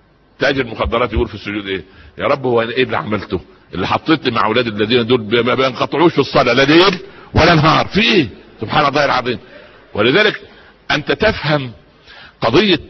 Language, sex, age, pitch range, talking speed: Arabic, male, 60-79, 105-145 Hz, 165 wpm